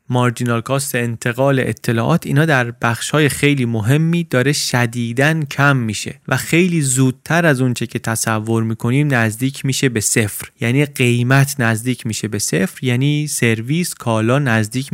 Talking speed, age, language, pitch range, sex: 140 wpm, 30-49, Persian, 115-140 Hz, male